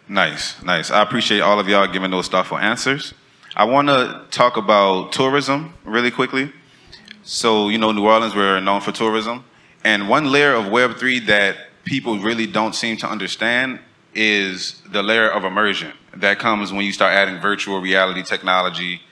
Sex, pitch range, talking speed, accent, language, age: male, 95-115 Hz, 170 wpm, American, English, 30-49